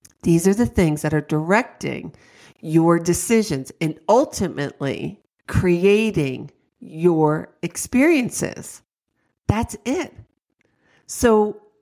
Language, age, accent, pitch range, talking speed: English, 50-69, American, 155-205 Hz, 85 wpm